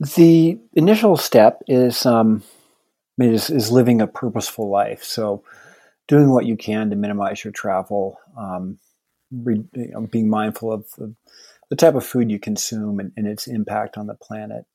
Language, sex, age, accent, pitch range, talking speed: English, male, 50-69, American, 110-130 Hz, 165 wpm